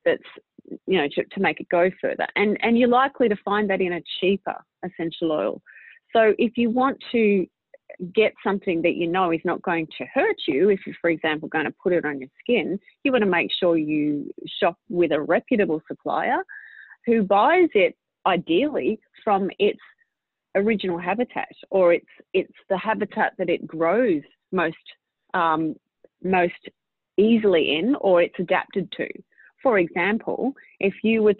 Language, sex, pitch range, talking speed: English, female, 170-215 Hz, 170 wpm